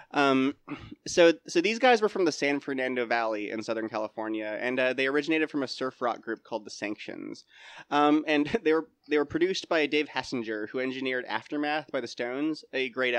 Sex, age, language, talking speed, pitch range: male, 20-39, English, 200 wpm, 115-150 Hz